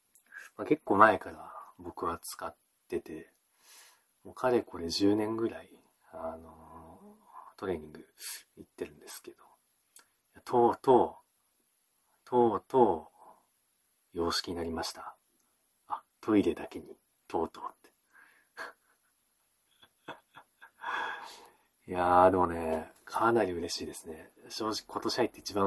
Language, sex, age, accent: Japanese, male, 40-59, native